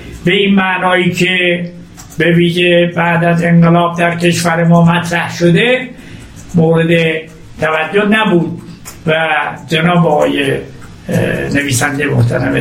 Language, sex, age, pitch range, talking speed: Persian, male, 60-79, 145-205 Hz, 100 wpm